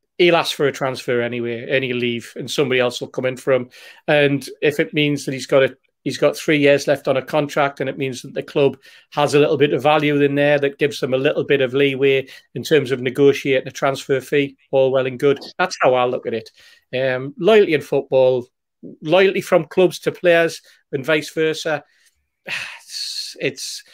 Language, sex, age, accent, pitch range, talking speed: English, male, 40-59, British, 135-165 Hz, 215 wpm